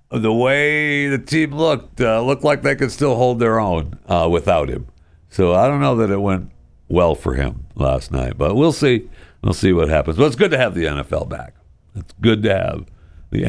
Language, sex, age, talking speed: English, male, 60-79, 220 wpm